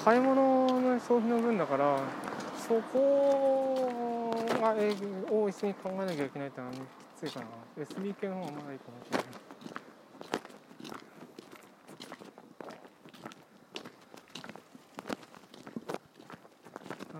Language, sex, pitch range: Japanese, male, 145-230 Hz